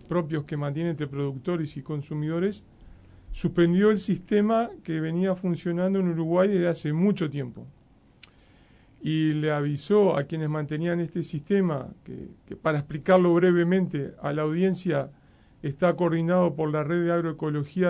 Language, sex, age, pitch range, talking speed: Spanish, male, 40-59, 150-180 Hz, 140 wpm